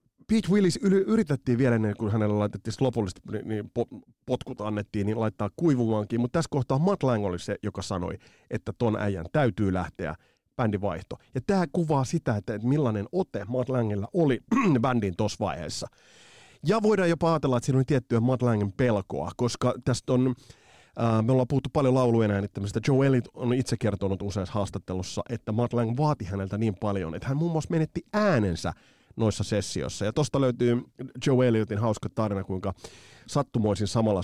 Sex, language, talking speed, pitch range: male, Finnish, 170 wpm, 100-130 Hz